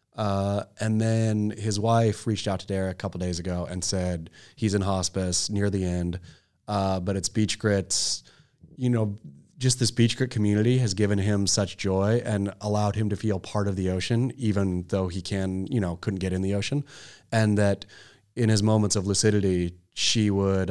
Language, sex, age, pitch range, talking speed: English, male, 30-49, 95-110 Hz, 195 wpm